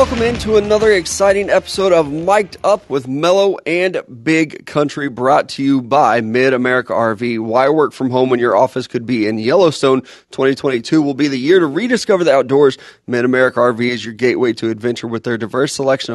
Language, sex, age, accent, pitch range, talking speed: English, male, 30-49, American, 120-160 Hz, 195 wpm